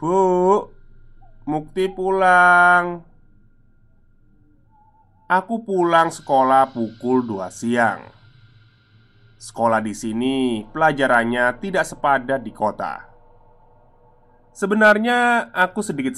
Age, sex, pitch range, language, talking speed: 20-39, male, 110-165 Hz, Indonesian, 75 wpm